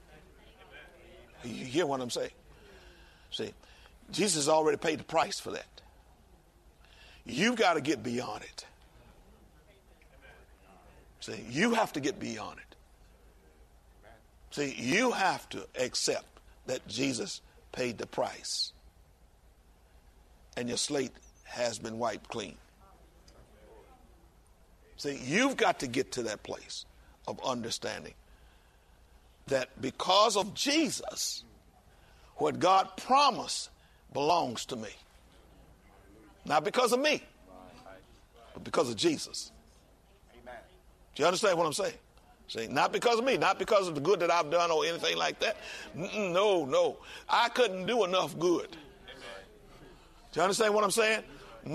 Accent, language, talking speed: American, English, 125 wpm